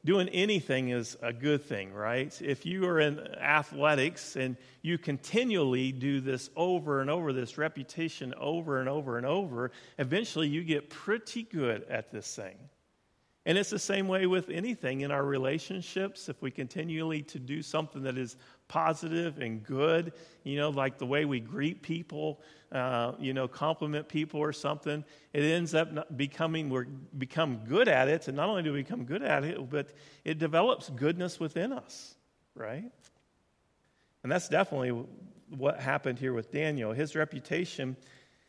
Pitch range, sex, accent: 130-160 Hz, male, American